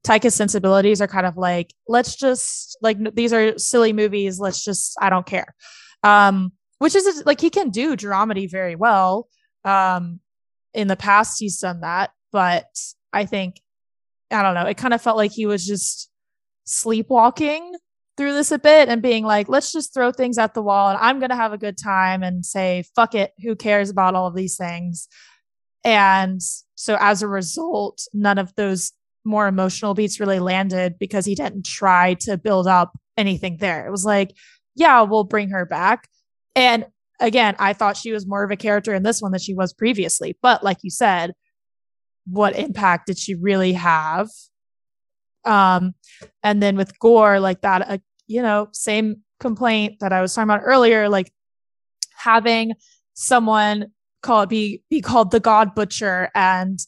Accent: American